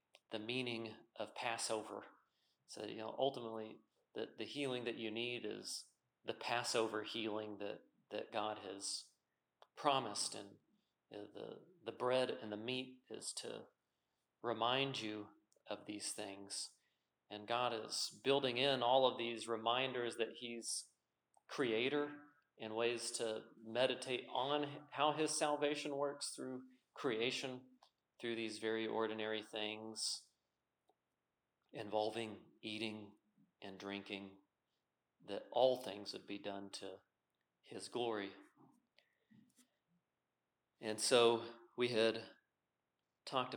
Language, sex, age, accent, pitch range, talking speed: English, male, 40-59, American, 105-125 Hz, 115 wpm